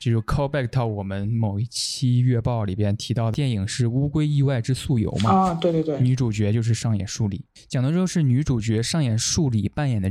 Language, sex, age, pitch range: Chinese, male, 20-39, 110-135 Hz